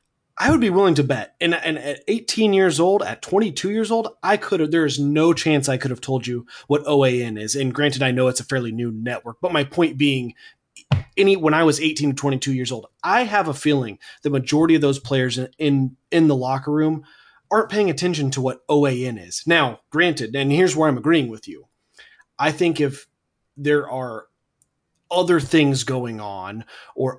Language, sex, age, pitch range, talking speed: English, male, 30-49, 125-160 Hz, 205 wpm